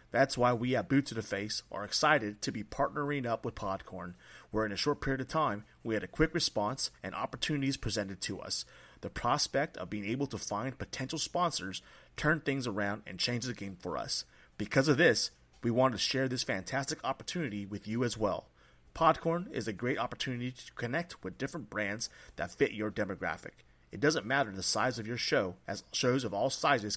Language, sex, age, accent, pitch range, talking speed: English, male, 30-49, American, 105-135 Hz, 205 wpm